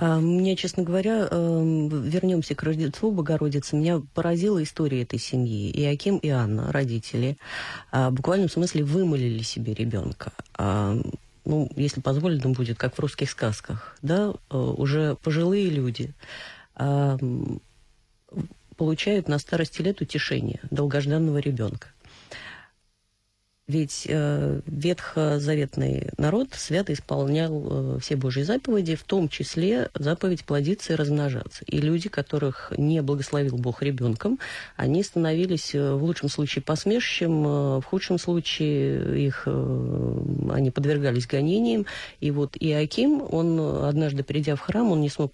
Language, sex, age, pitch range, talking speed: Russian, female, 30-49, 135-165 Hz, 115 wpm